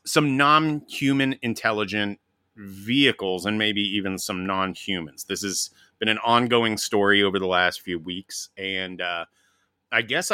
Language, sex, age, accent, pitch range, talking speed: English, male, 30-49, American, 95-120 Hz, 140 wpm